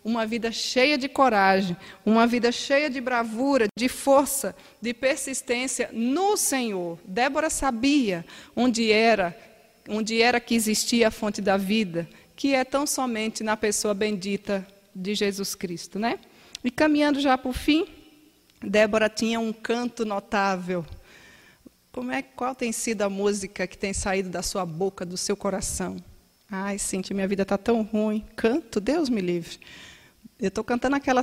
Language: Portuguese